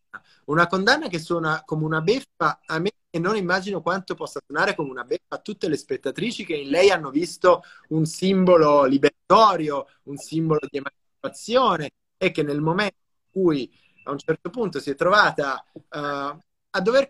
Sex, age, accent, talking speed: male, 30-49, native, 170 wpm